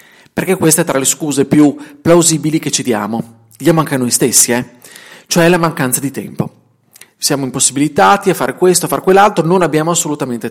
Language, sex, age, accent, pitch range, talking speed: Italian, male, 40-59, native, 135-180 Hz, 185 wpm